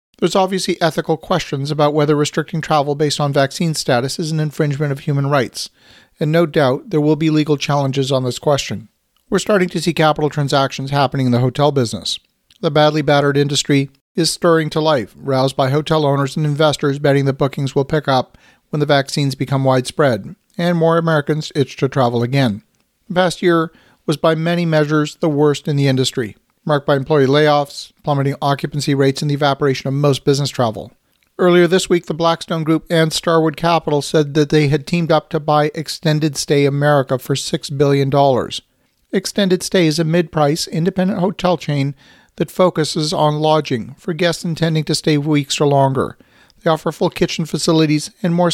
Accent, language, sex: American, English, male